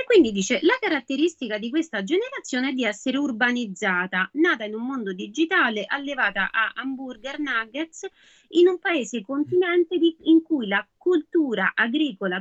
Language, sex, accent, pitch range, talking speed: Italian, female, native, 210-325 Hz, 150 wpm